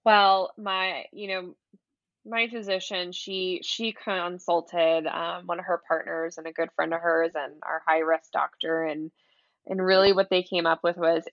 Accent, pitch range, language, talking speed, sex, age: American, 165-195 Hz, English, 180 wpm, female, 20-39